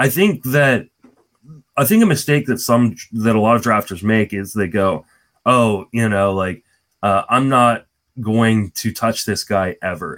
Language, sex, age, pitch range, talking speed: English, male, 20-39, 105-130 Hz, 185 wpm